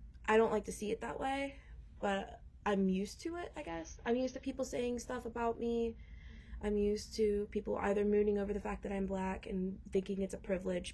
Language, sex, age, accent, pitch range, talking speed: English, female, 20-39, American, 180-210 Hz, 220 wpm